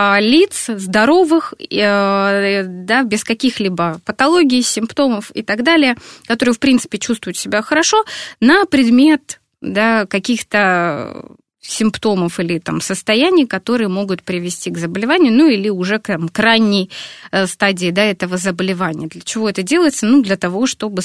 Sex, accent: female, native